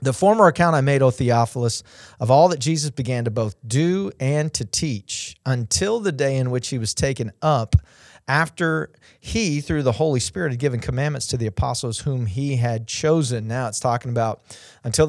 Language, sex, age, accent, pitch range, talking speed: English, male, 40-59, American, 115-150 Hz, 190 wpm